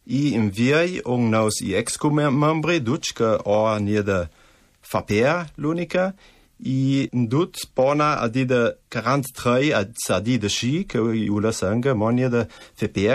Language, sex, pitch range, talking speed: Italian, male, 105-140 Hz, 145 wpm